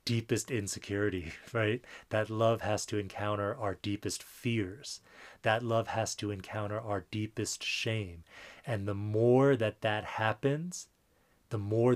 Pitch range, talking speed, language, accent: 100-115 Hz, 135 wpm, English, American